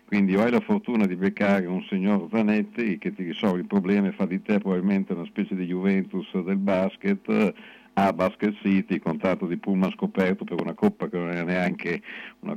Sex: male